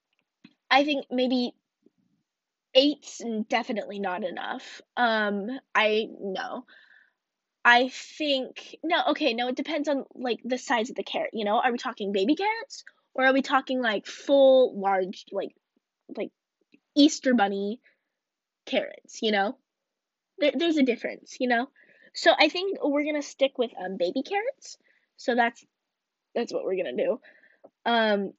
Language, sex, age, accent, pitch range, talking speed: English, female, 10-29, American, 225-300 Hz, 145 wpm